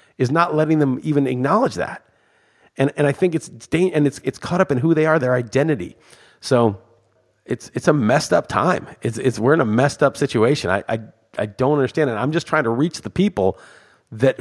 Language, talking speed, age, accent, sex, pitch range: English, 215 wpm, 40-59, American, male, 120-160 Hz